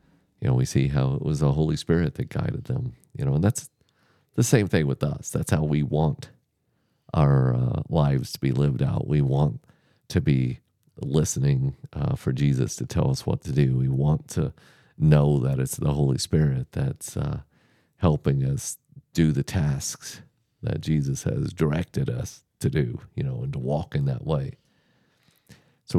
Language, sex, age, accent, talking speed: English, male, 40-59, American, 180 wpm